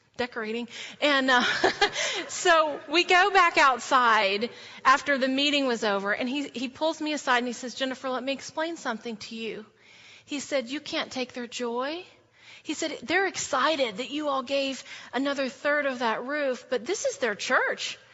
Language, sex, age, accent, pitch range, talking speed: English, female, 30-49, American, 240-325 Hz, 180 wpm